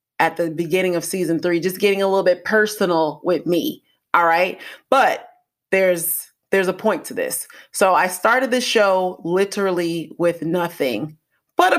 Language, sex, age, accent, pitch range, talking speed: English, female, 30-49, American, 165-215 Hz, 170 wpm